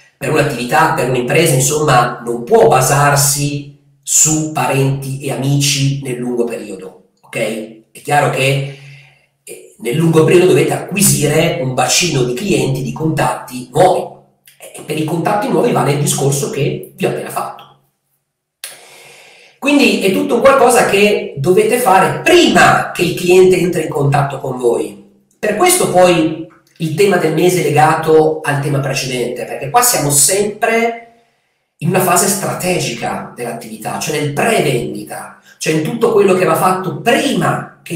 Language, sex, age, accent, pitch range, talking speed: Italian, male, 40-59, native, 140-180 Hz, 145 wpm